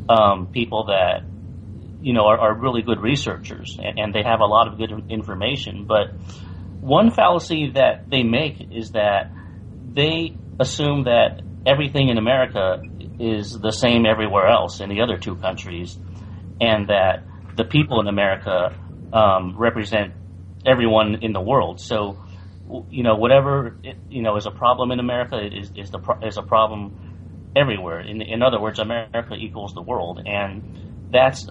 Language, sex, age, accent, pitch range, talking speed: English, male, 30-49, American, 95-120 Hz, 155 wpm